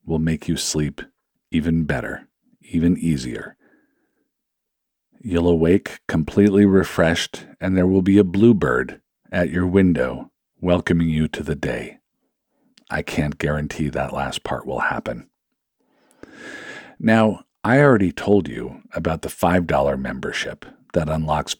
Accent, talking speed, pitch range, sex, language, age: American, 125 wpm, 85-110 Hz, male, English, 50-69